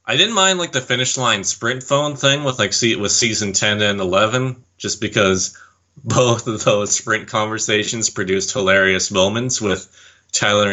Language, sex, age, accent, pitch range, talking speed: English, male, 30-49, American, 95-125 Hz, 175 wpm